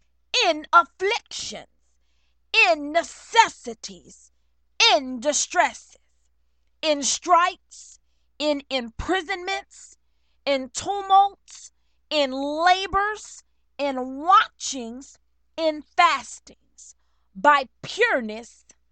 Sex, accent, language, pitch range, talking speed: female, American, English, 215-315 Hz, 65 wpm